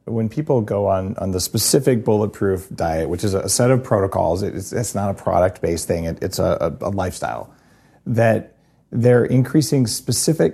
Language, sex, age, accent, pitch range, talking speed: English, male, 40-59, American, 95-120 Hz, 175 wpm